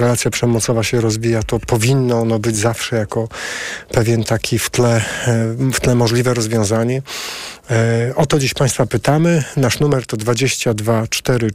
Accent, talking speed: native, 145 wpm